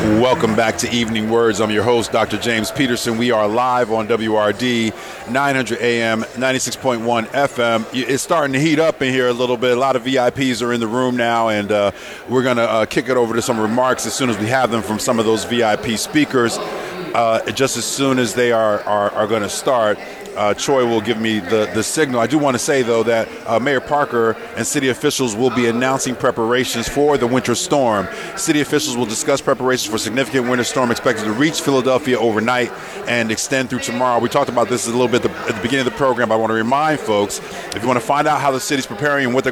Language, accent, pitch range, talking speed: English, American, 115-130 Hz, 235 wpm